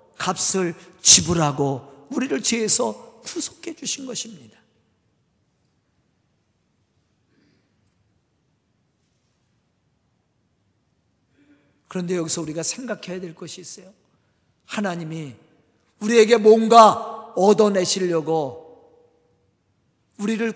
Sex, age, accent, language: male, 50-69, native, Korean